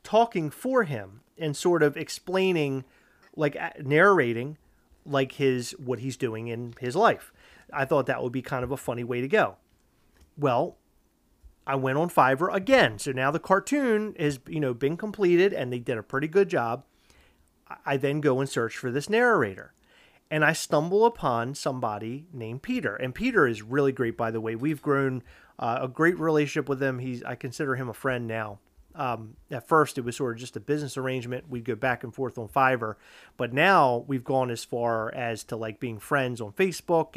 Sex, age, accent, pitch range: male, 30-49, American, 125-160 Hz